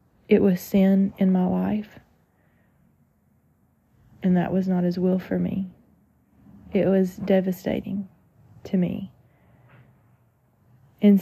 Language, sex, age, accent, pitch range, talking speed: English, female, 30-49, American, 120-195 Hz, 105 wpm